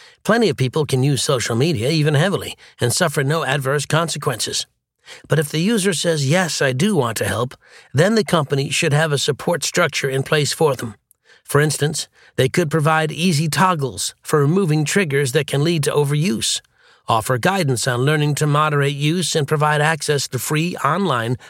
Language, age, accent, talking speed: English, 50-69, American, 180 wpm